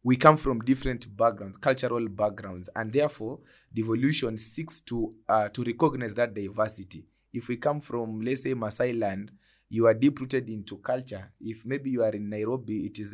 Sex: male